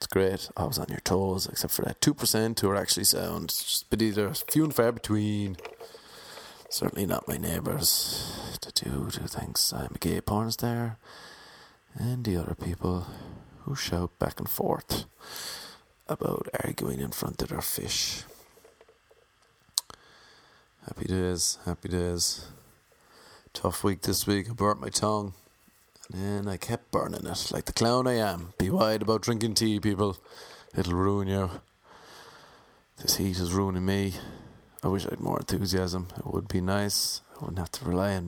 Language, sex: English, male